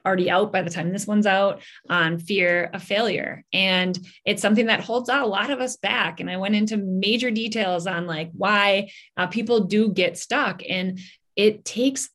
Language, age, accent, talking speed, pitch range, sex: English, 20-39, American, 205 wpm, 190-230 Hz, female